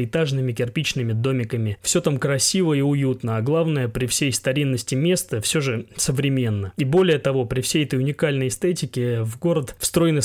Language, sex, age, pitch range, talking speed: Russian, male, 20-39, 120-150 Hz, 165 wpm